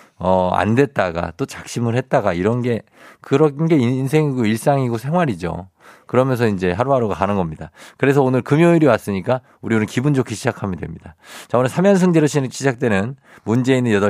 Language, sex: Korean, male